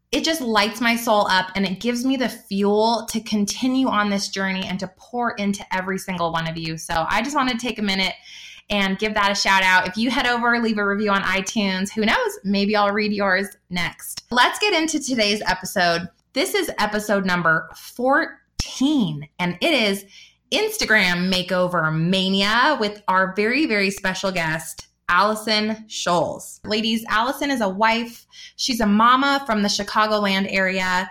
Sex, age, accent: female, 20-39, American